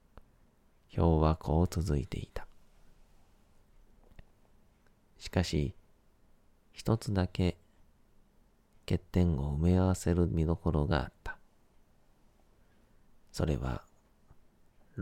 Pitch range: 80-90 Hz